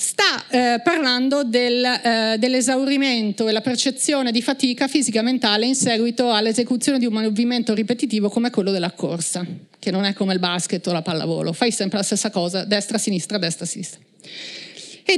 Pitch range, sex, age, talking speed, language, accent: 200-255 Hz, female, 40-59, 155 wpm, Italian, native